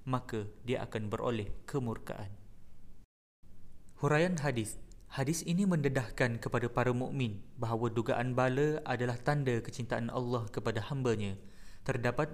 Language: Malay